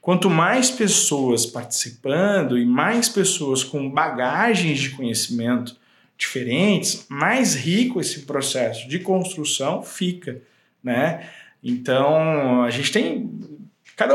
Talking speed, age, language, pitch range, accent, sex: 105 wpm, 20-39, Portuguese, 120-190 Hz, Brazilian, male